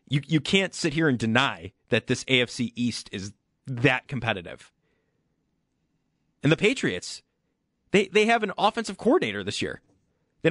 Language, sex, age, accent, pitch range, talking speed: English, male, 30-49, American, 115-160 Hz, 150 wpm